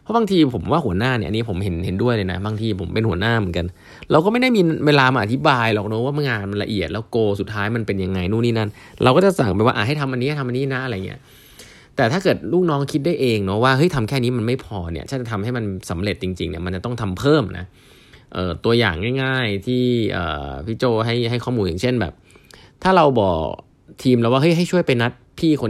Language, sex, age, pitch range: Thai, male, 20-39, 100-140 Hz